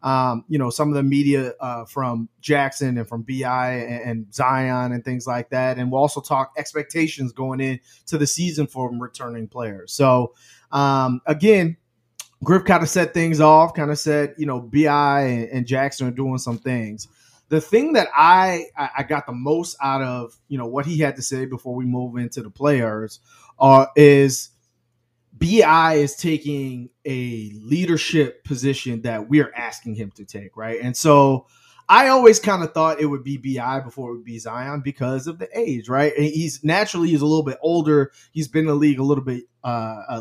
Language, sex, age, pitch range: English, male, 30-49, 125-155 Hz